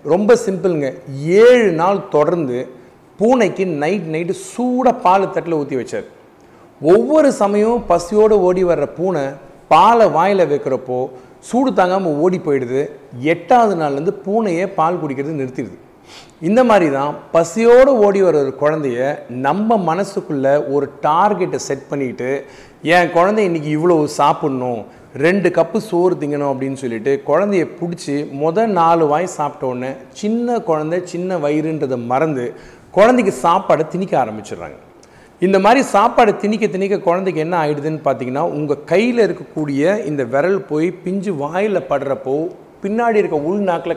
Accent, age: native, 40-59